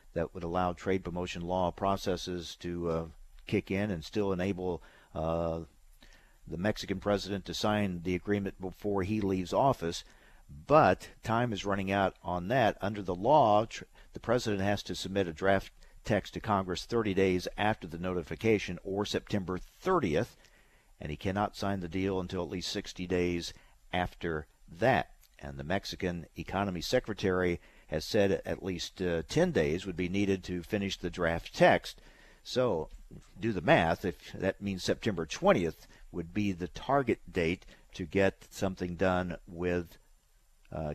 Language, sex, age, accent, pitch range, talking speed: English, male, 50-69, American, 85-100 Hz, 155 wpm